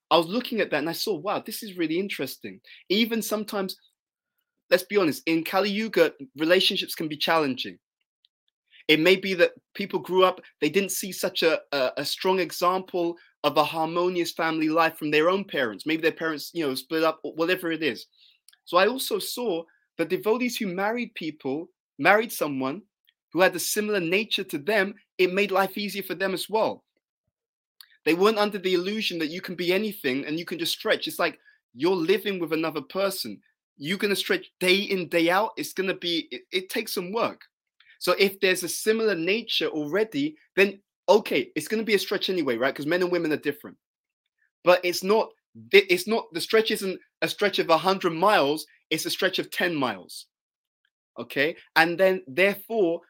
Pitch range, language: 165-210 Hz, English